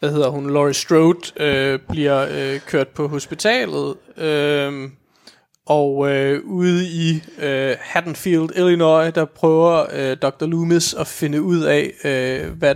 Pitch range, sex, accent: 135-165 Hz, male, native